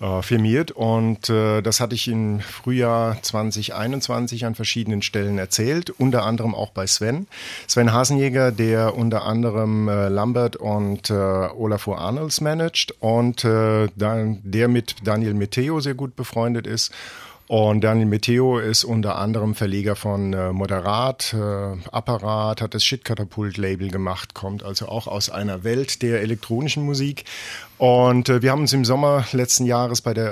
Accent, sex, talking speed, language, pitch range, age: German, male, 150 wpm, German, 105-120 Hz, 50-69